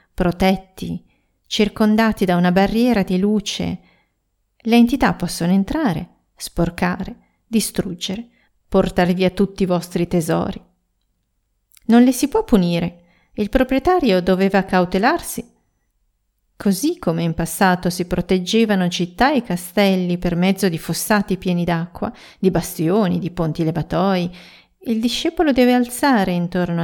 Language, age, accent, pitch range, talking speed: Italian, 40-59, native, 175-220 Hz, 120 wpm